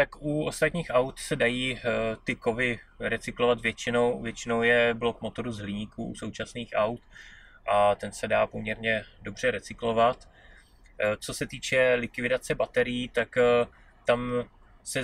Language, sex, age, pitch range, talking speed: Czech, male, 20-39, 110-125 Hz, 135 wpm